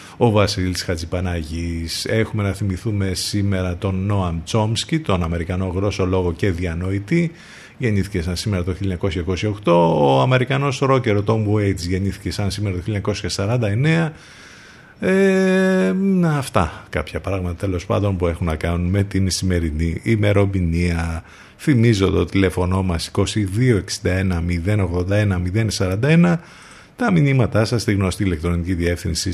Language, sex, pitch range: Greek, male, 90-110 Hz